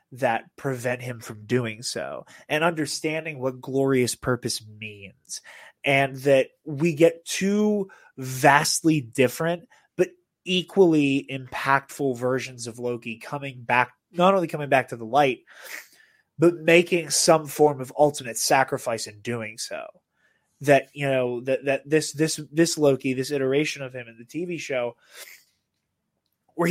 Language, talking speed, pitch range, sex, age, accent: English, 140 wpm, 125-160 Hz, male, 20-39, American